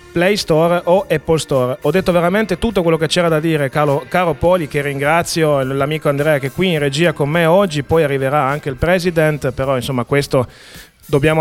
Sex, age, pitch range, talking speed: male, 30-49, 140-170 Hz, 200 wpm